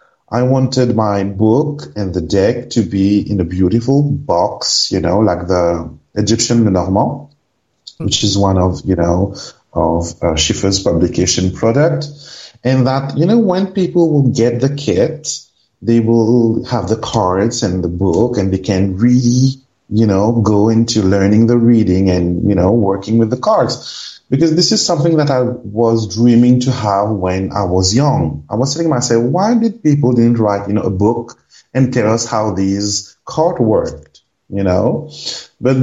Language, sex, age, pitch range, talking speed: English, male, 30-49, 95-125 Hz, 170 wpm